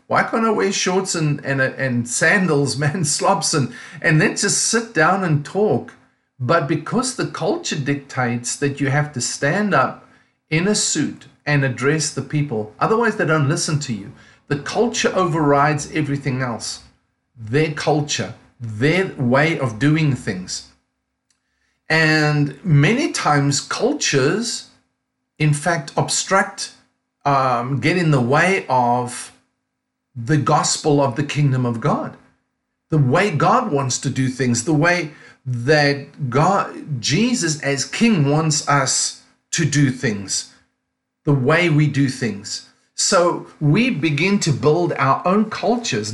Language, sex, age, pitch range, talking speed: English, male, 50-69, 135-165 Hz, 140 wpm